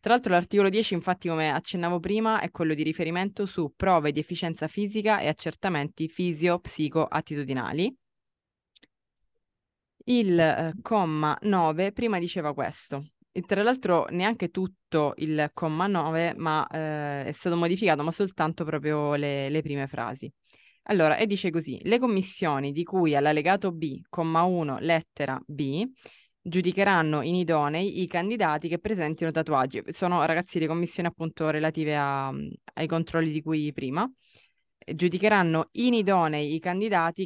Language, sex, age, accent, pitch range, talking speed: Italian, female, 20-39, native, 155-190 Hz, 140 wpm